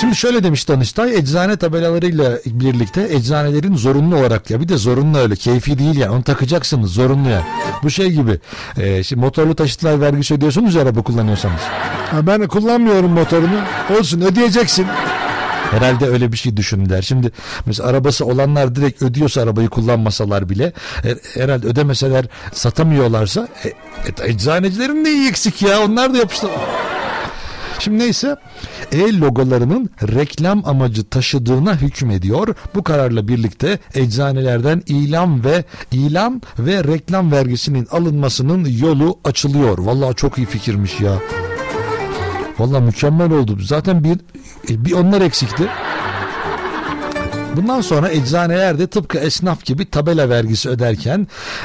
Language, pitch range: Turkish, 115-165 Hz